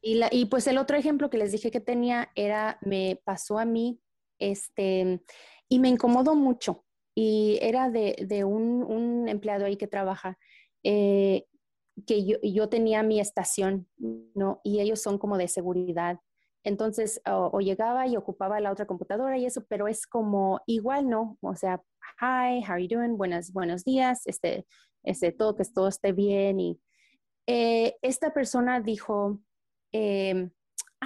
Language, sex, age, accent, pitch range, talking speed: Spanish, female, 30-49, Mexican, 195-245 Hz, 165 wpm